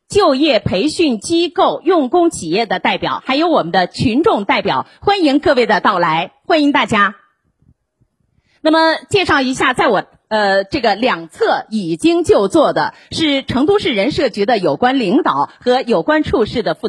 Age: 30-49